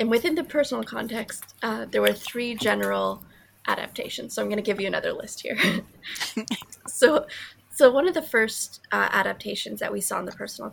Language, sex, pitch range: English, female, 200-230 Hz